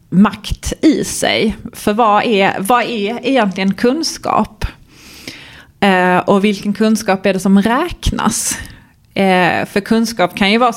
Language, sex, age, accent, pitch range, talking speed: Swedish, female, 30-49, native, 180-225 Hz, 125 wpm